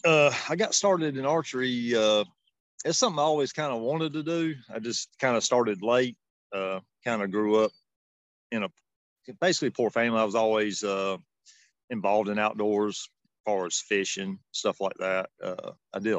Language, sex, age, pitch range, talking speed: English, male, 40-59, 95-115 Hz, 180 wpm